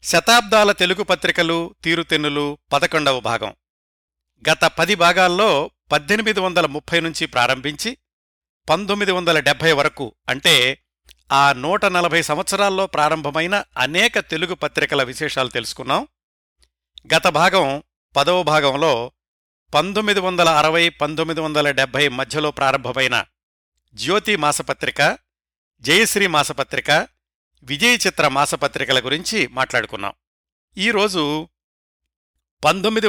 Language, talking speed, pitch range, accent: Telugu, 80 wpm, 125-175 Hz, native